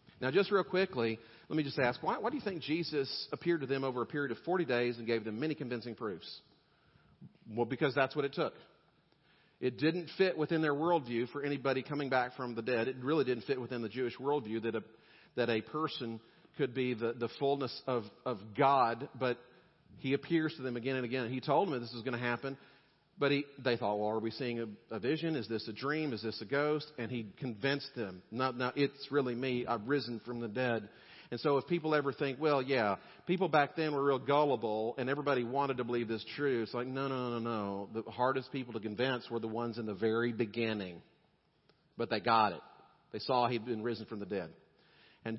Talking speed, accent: 225 wpm, American